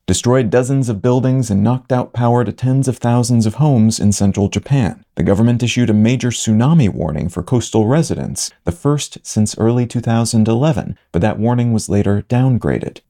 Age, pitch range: 40-59, 110-135 Hz